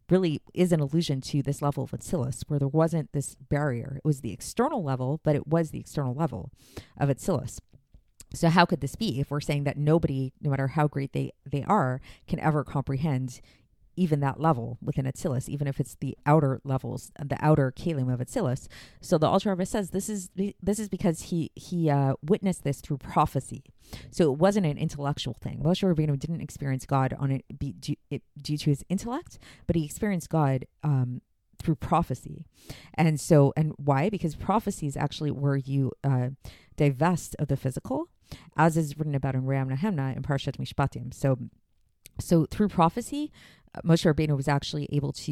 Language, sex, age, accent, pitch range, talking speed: English, female, 40-59, American, 135-165 Hz, 185 wpm